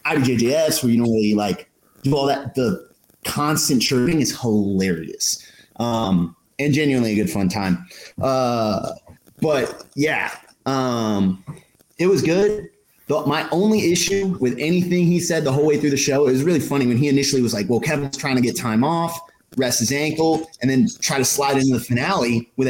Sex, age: male, 30-49